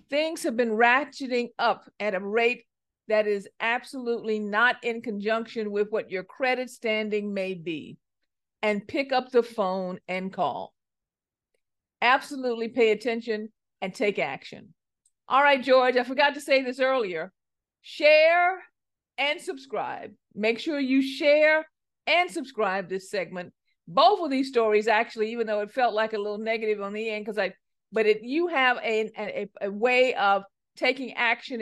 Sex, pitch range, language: female, 215-275 Hz, English